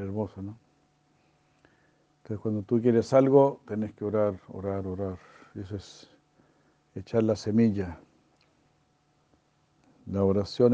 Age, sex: 60-79, male